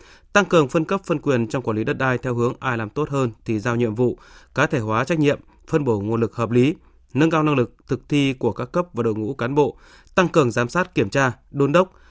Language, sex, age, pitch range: Vietnamese, male, 20-39, 115-150 Hz